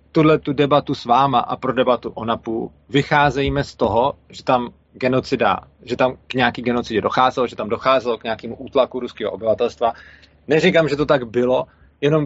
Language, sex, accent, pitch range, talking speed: Czech, male, native, 120-145 Hz, 175 wpm